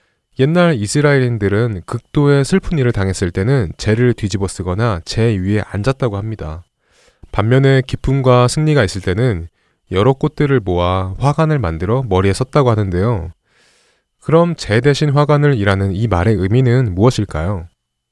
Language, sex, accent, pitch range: Korean, male, native, 95-130 Hz